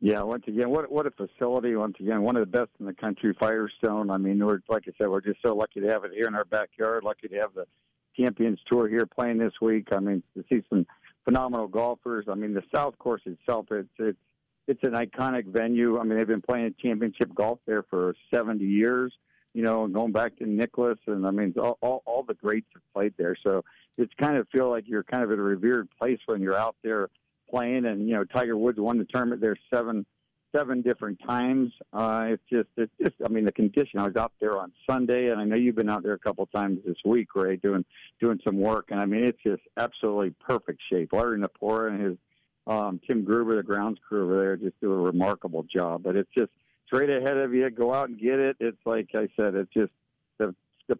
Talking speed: 235 wpm